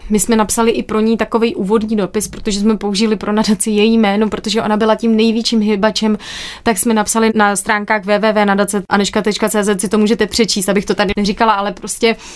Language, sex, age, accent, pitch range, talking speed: Czech, female, 20-39, native, 200-225 Hz, 185 wpm